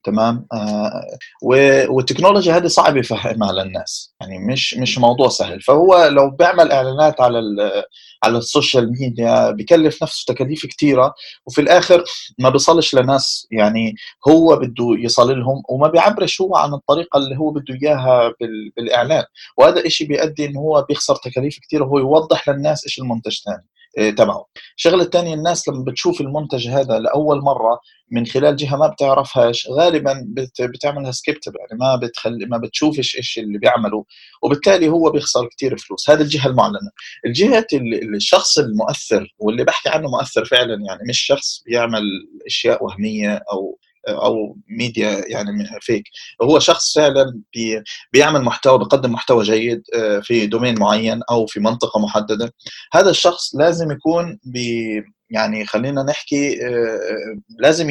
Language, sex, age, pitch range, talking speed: Arabic, male, 30-49, 120-155 Hz, 140 wpm